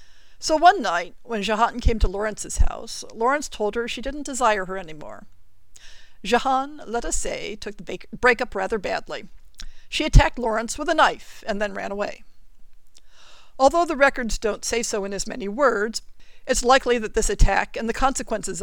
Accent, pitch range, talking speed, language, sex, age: American, 205-275 Hz, 175 wpm, English, female, 50-69